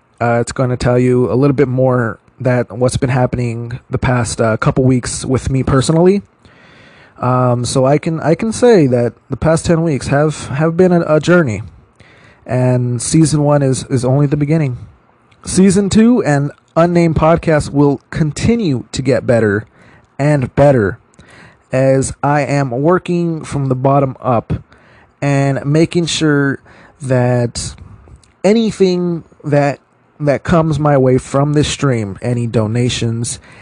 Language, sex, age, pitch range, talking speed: English, male, 30-49, 120-145 Hz, 150 wpm